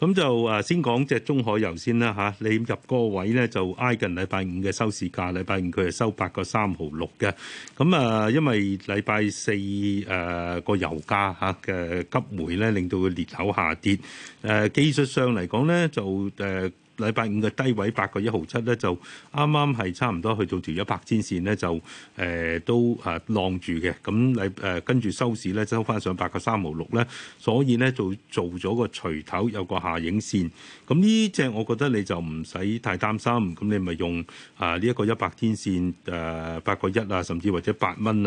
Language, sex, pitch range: Chinese, male, 90-115 Hz